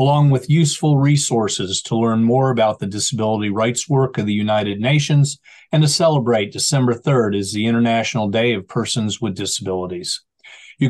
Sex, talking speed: male, 165 wpm